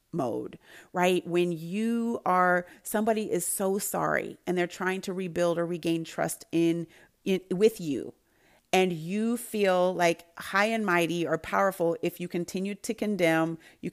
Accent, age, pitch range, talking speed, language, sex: American, 40-59, 165-205 Hz, 155 wpm, English, female